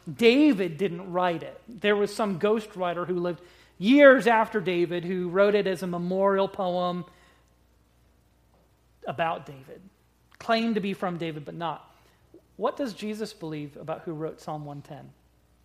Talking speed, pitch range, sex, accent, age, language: 150 wpm, 170-220 Hz, male, American, 40-59, English